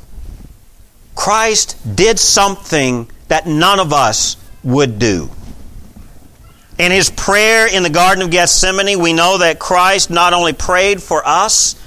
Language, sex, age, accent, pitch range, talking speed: English, male, 50-69, American, 115-170 Hz, 130 wpm